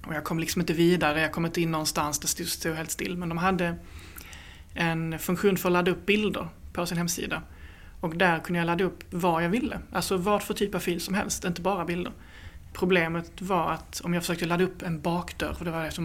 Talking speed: 235 wpm